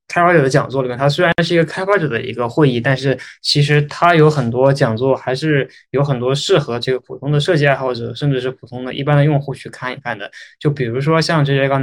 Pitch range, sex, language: 130-155 Hz, male, Chinese